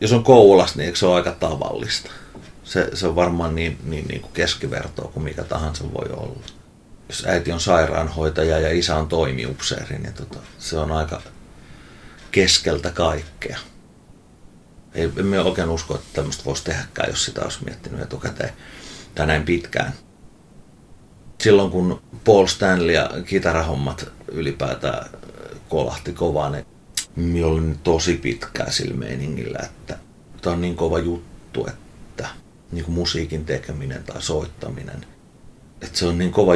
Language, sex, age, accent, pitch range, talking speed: Finnish, male, 30-49, native, 80-90 Hz, 135 wpm